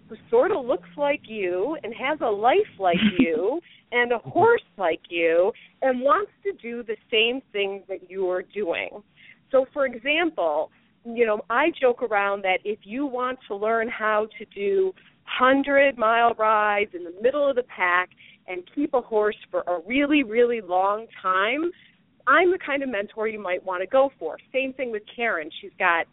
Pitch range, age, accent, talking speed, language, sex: 205-270 Hz, 40-59, American, 185 wpm, English, female